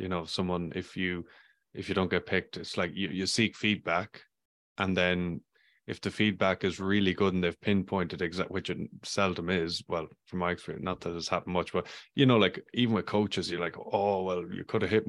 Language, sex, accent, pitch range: English, male, Irish, 90-105 Hz